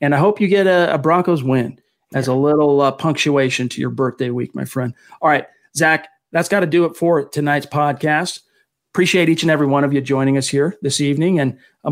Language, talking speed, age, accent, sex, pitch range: English, 225 wpm, 40-59, American, male, 135-155 Hz